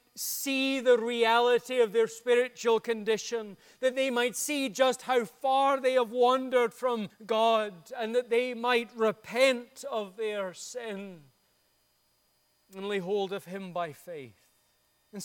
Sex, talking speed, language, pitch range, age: male, 140 wpm, English, 210-245 Hz, 30-49